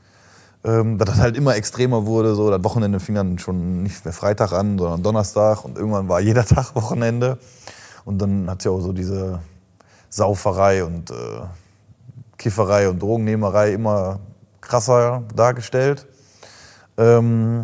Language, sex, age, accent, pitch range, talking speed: German, male, 20-39, German, 95-120 Hz, 145 wpm